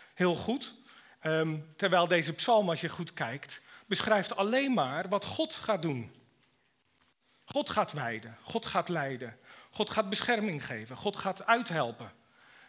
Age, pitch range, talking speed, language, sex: 40-59, 155-215 Hz, 135 wpm, Dutch, male